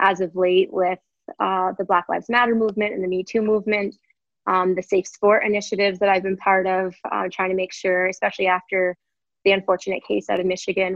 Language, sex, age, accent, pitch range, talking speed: English, female, 20-39, American, 185-210 Hz, 210 wpm